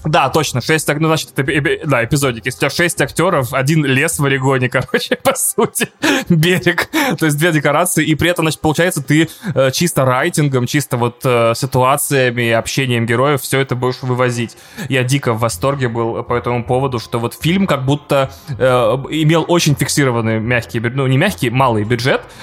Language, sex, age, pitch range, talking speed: Russian, male, 20-39, 125-155 Hz, 180 wpm